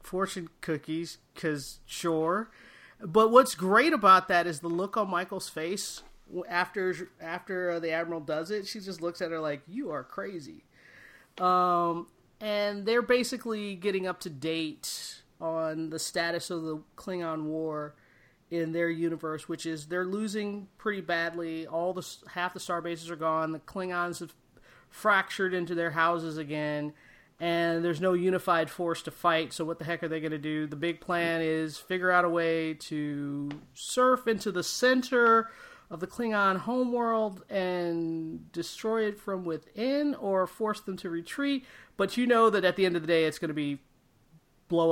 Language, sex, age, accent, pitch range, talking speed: English, male, 30-49, American, 160-200 Hz, 170 wpm